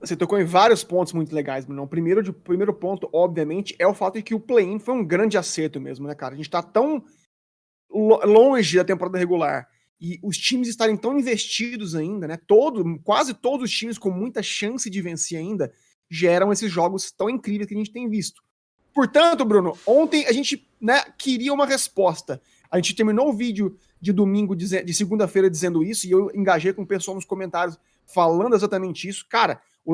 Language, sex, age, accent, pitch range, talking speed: Portuguese, male, 30-49, Brazilian, 185-230 Hz, 195 wpm